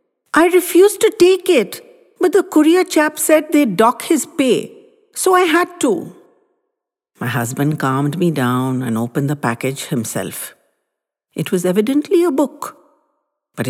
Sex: female